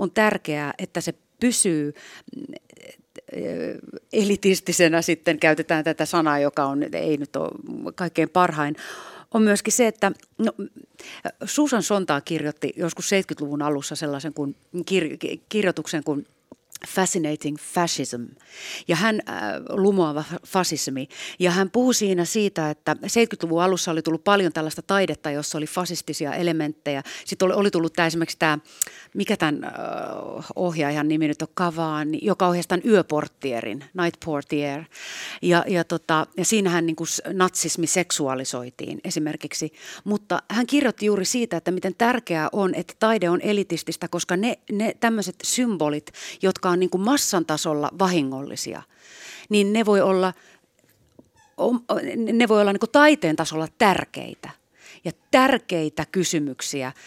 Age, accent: 40-59, native